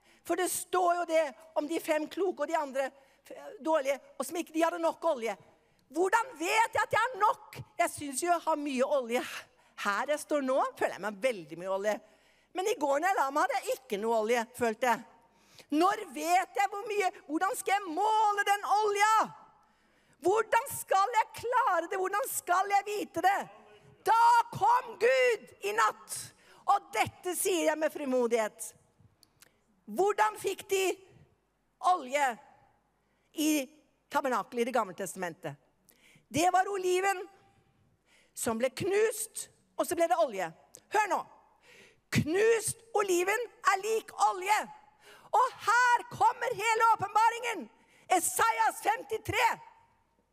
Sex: female